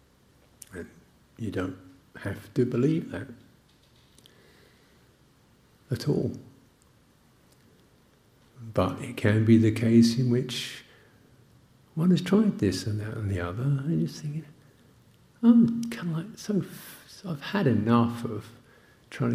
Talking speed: 120 wpm